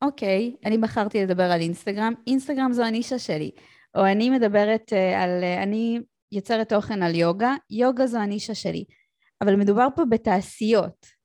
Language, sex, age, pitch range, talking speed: Hebrew, female, 20-39, 185-235 Hz, 150 wpm